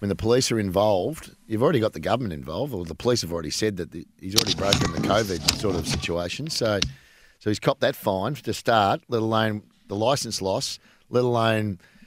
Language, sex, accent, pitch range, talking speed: English, male, Australian, 95-115 Hz, 210 wpm